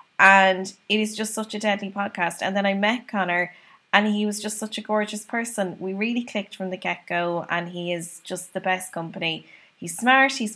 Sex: female